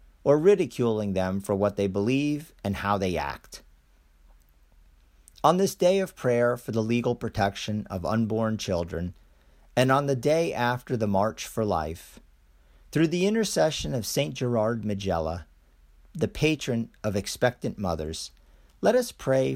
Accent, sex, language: American, male, English